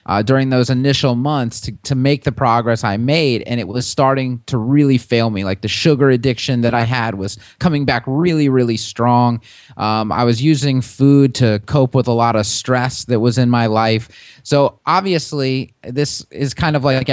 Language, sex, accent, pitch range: English, male, American, 115-140 Hz